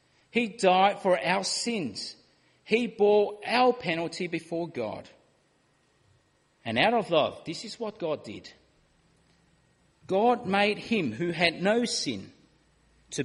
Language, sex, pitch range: English, male, 150-215 Hz